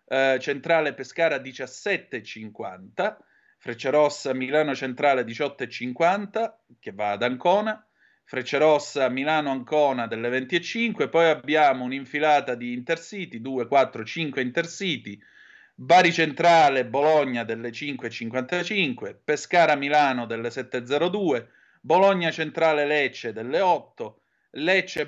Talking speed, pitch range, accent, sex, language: 105 wpm, 125-160 Hz, native, male, Italian